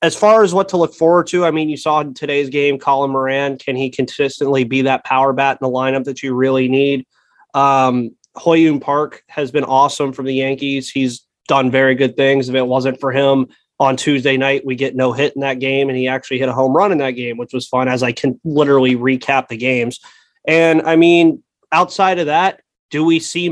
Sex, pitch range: male, 135-160 Hz